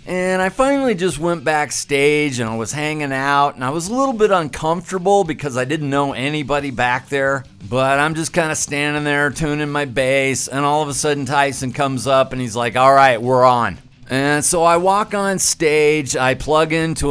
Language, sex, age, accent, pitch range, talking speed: English, male, 50-69, American, 135-165 Hz, 205 wpm